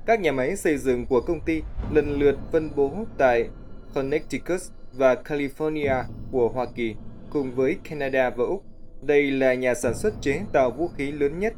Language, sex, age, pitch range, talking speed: Vietnamese, male, 20-39, 120-150 Hz, 180 wpm